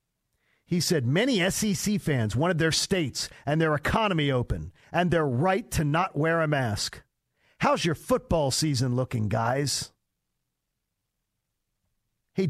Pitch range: 140-210 Hz